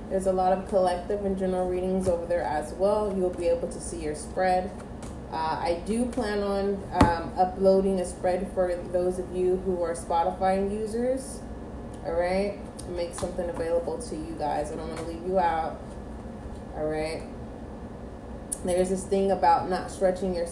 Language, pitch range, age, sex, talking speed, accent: English, 180-205 Hz, 20-39, female, 170 wpm, American